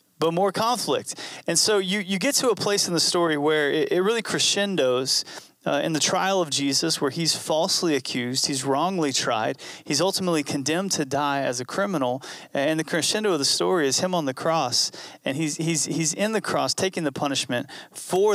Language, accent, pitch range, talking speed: English, American, 140-180 Hz, 205 wpm